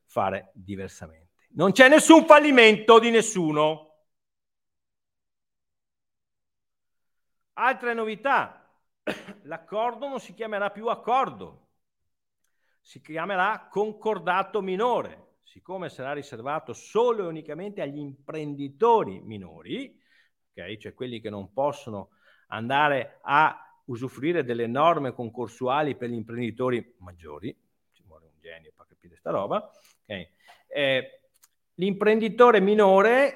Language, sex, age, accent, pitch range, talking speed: Italian, male, 50-69, native, 115-190 Hz, 100 wpm